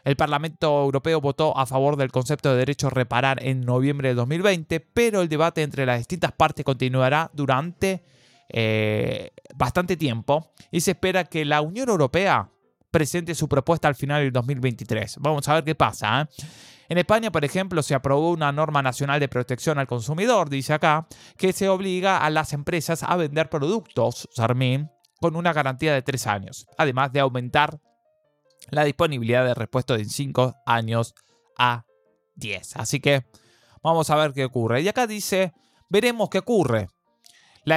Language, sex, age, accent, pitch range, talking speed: Spanish, male, 20-39, Argentinian, 125-165 Hz, 165 wpm